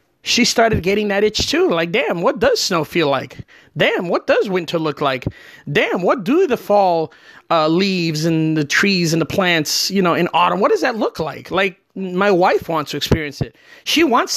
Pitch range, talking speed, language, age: 160-220 Hz, 210 wpm, English, 30-49